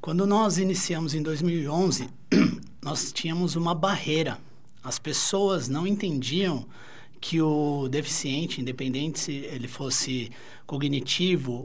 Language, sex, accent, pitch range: Portuguese, male, Brazilian, 135-185 Hz